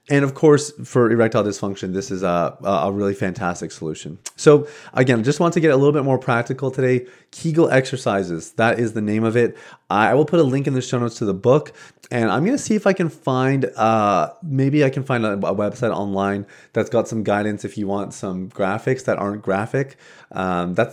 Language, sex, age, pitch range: English, male, 30-49, 100-130 Hz